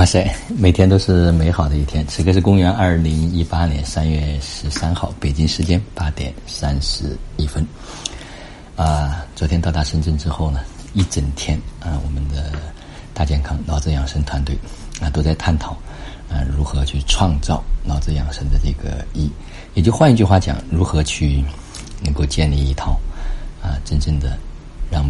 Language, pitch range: Chinese, 75-85 Hz